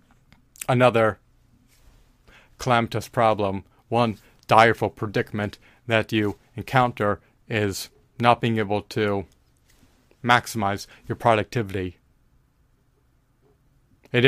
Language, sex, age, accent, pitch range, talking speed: English, male, 30-49, American, 105-125 Hz, 75 wpm